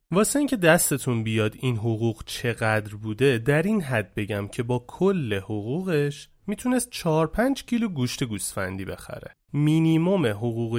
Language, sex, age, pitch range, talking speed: English, male, 30-49, 115-175 Hz, 135 wpm